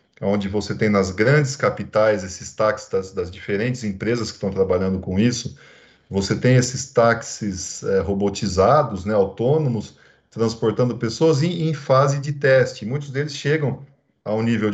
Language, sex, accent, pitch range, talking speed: English, male, Brazilian, 100-135 Hz, 150 wpm